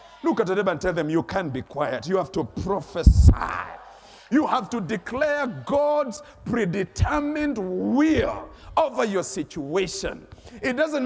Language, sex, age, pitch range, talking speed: English, male, 50-69, 195-265 Hz, 145 wpm